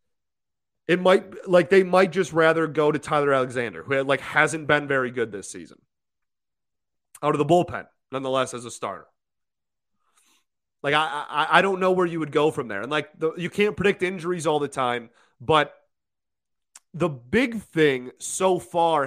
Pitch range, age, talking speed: 135-185 Hz, 30-49, 170 wpm